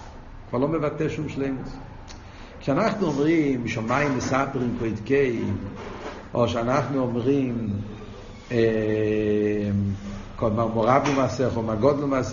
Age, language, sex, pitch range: 60-79, Hebrew, male, 110-175 Hz